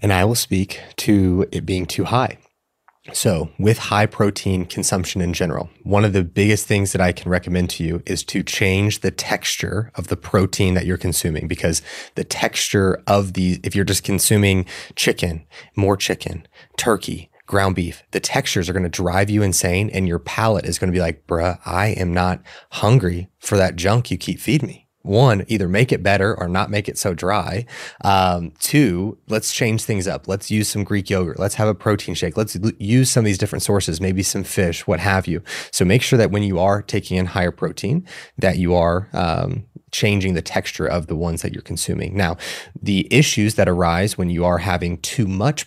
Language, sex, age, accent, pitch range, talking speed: English, male, 30-49, American, 90-105 Hz, 205 wpm